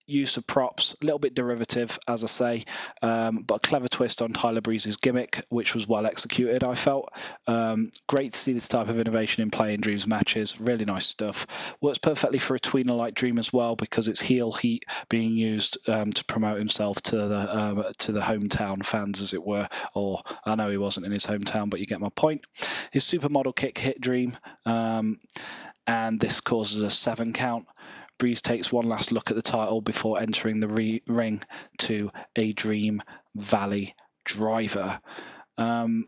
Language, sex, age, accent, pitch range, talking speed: English, male, 20-39, British, 105-125 Hz, 185 wpm